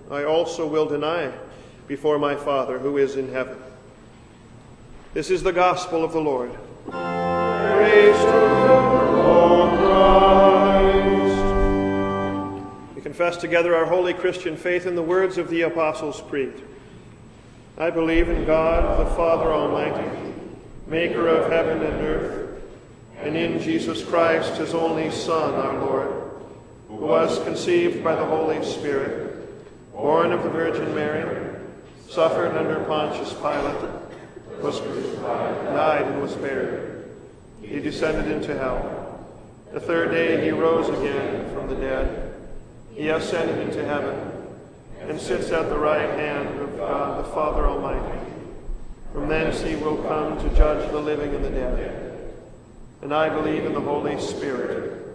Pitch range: 135-180 Hz